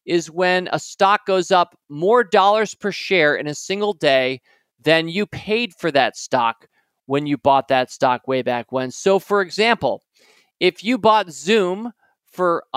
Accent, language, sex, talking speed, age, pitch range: American, English, male, 175 wpm, 40-59, 160-220 Hz